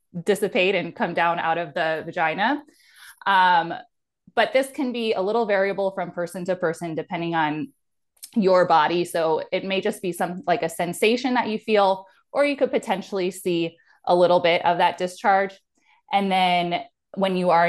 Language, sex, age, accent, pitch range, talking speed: English, female, 20-39, American, 170-220 Hz, 175 wpm